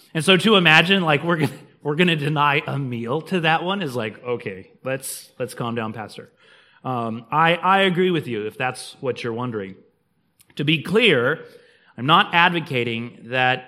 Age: 30-49